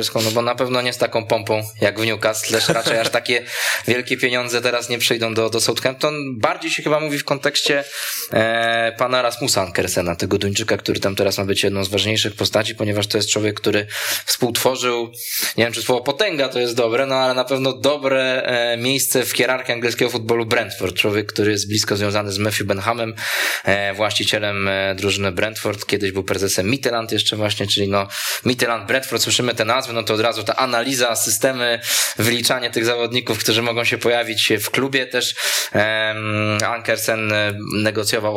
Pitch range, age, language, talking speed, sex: 105-120 Hz, 20-39, Polish, 180 wpm, male